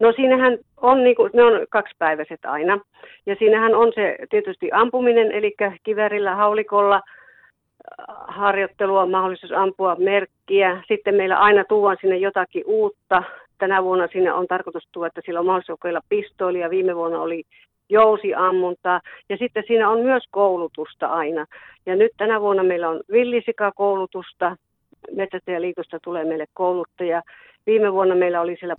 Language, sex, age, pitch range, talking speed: Finnish, female, 50-69, 175-215 Hz, 150 wpm